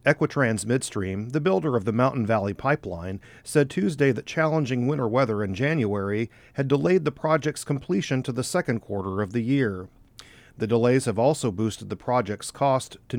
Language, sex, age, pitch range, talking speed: English, male, 40-59, 110-140 Hz, 175 wpm